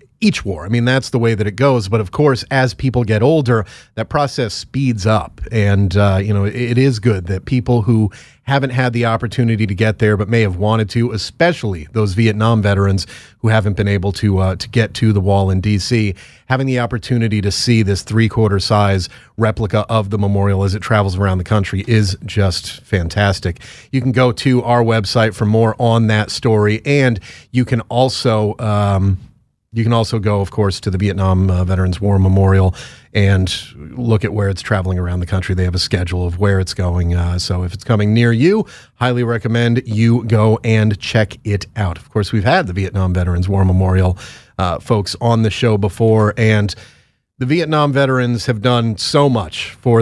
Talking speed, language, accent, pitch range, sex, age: 200 wpm, English, American, 100-120 Hz, male, 30-49